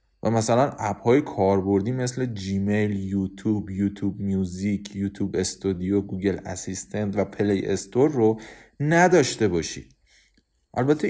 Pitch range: 105-160 Hz